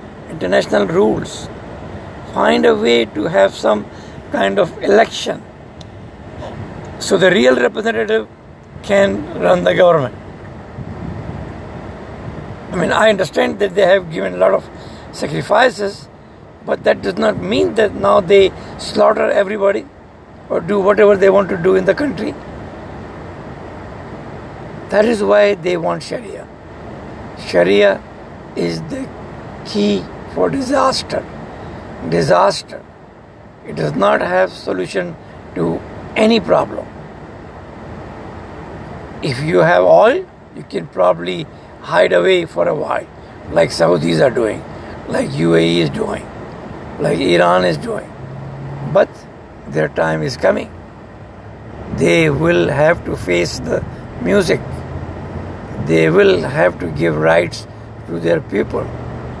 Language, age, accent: English, 60-79, Indian